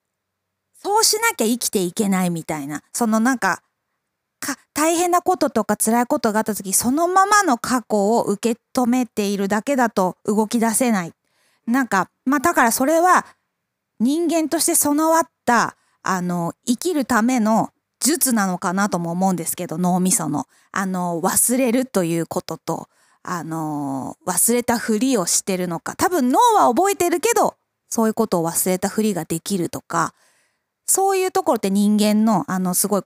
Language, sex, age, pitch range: Japanese, female, 20-39, 180-255 Hz